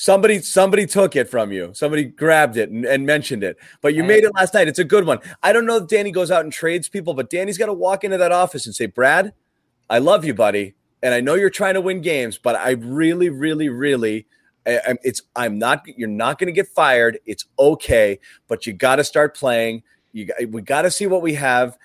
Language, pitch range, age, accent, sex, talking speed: English, 125-180 Hz, 30-49, American, male, 240 wpm